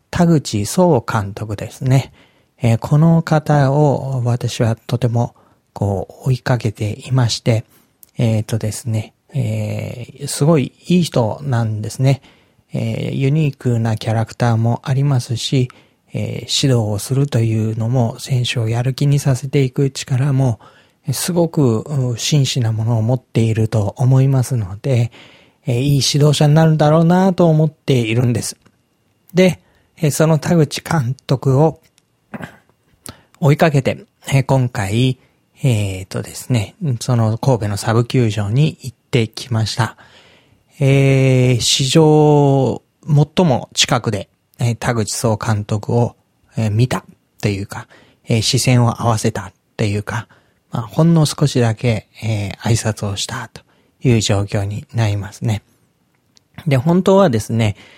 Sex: male